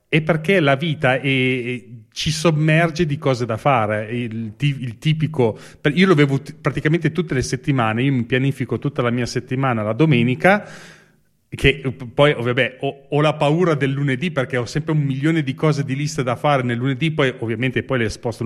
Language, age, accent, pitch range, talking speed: Italian, 30-49, native, 125-155 Hz, 190 wpm